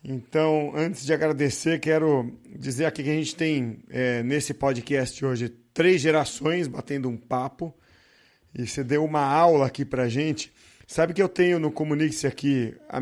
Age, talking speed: 40-59, 165 wpm